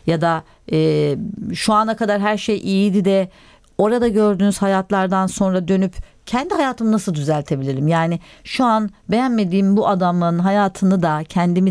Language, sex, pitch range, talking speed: Turkish, female, 170-215 Hz, 145 wpm